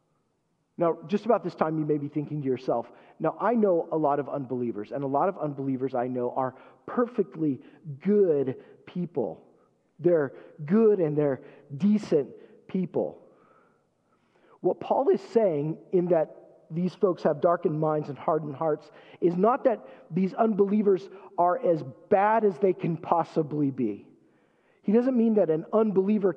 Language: English